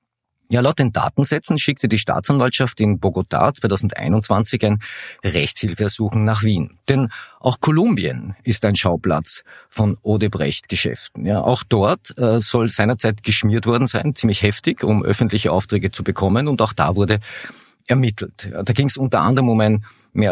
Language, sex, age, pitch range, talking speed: German, male, 50-69, 100-120 Hz, 155 wpm